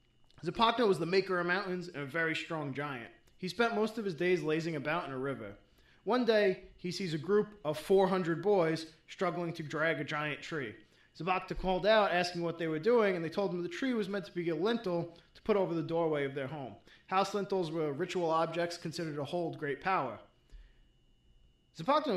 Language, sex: English, male